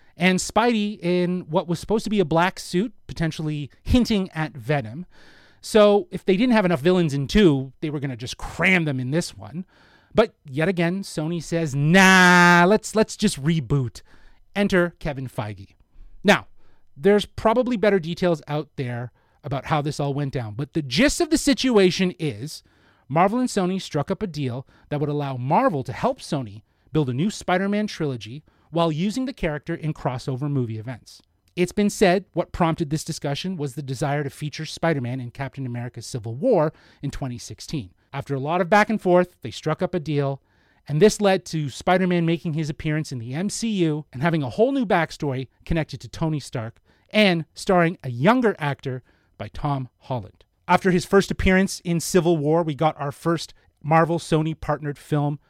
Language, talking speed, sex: English, 185 wpm, male